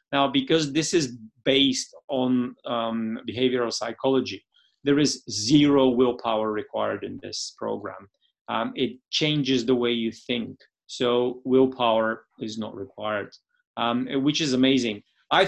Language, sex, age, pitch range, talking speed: English, male, 30-49, 120-145 Hz, 130 wpm